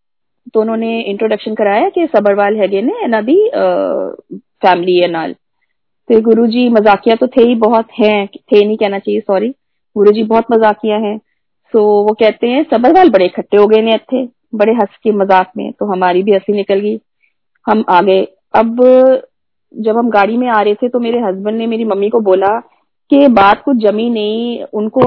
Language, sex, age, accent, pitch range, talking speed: Hindi, female, 20-39, native, 205-240 Hz, 140 wpm